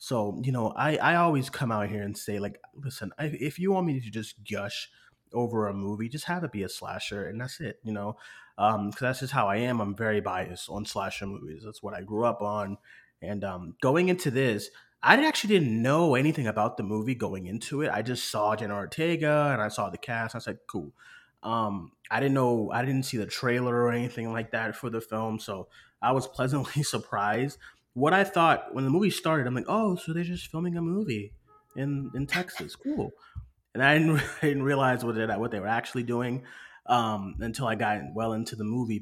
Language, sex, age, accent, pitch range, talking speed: English, male, 30-49, American, 105-140 Hz, 220 wpm